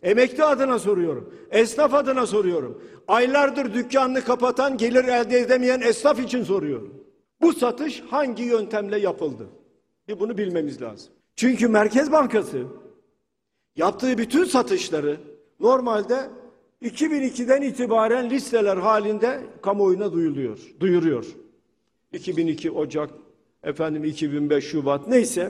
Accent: native